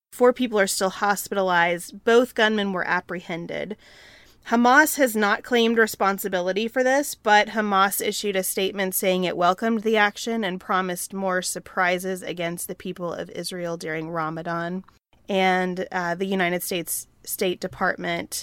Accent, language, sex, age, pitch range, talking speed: American, English, female, 20-39, 175-215 Hz, 145 wpm